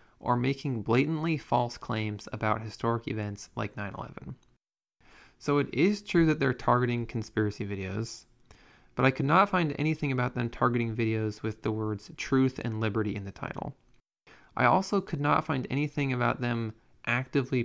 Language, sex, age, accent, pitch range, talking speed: English, male, 20-39, American, 110-140 Hz, 160 wpm